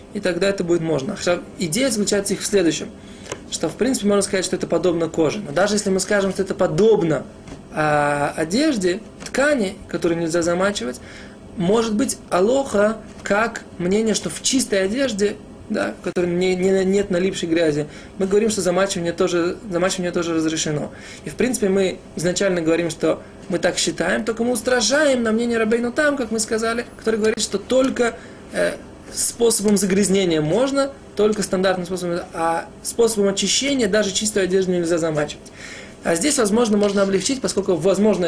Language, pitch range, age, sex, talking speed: Russian, 175-220 Hz, 20-39, male, 165 wpm